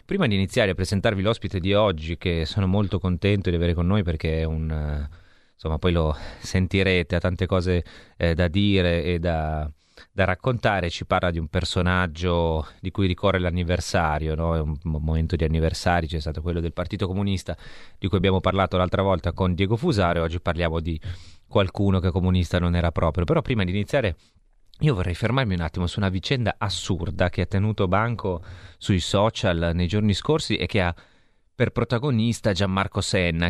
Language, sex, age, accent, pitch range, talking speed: Italian, male, 30-49, native, 85-100 Hz, 185 wpm